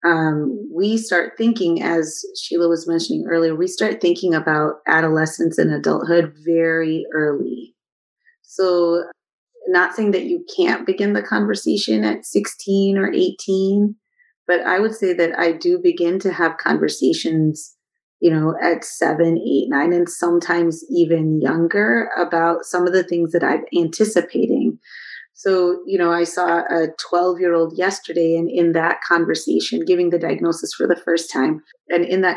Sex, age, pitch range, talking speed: female, 30-49, 165-190 Hz, 155 wpm